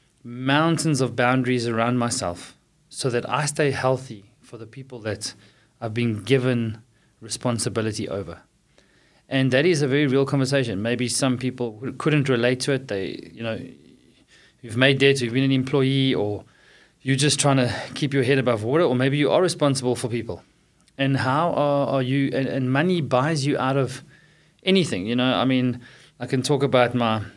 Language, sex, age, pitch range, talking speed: English, male, 20-39, 115-135 Hz, 180 wpm